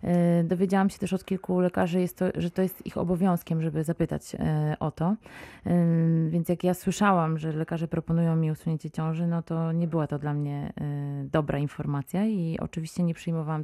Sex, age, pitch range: female, 30-49, 160-190 Hz